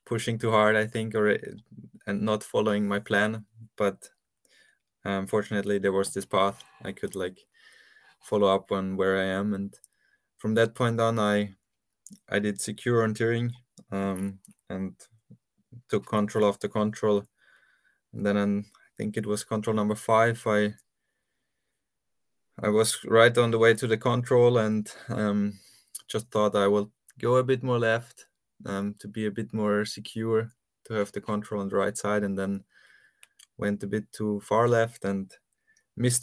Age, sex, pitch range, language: 20-39, male, 100-115 Hz, English